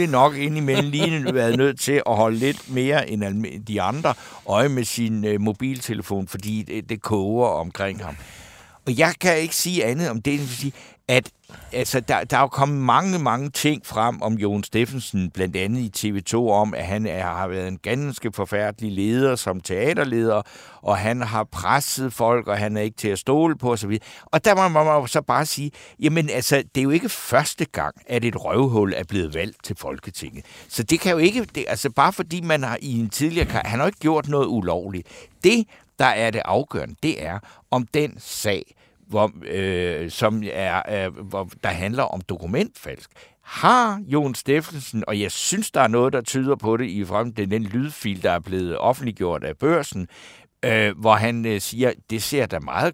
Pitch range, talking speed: 100-135 Hz, 195 wpm